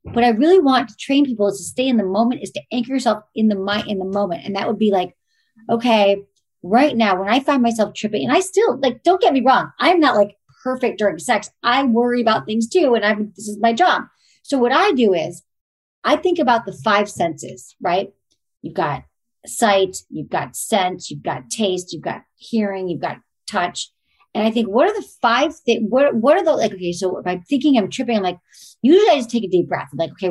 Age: 40-59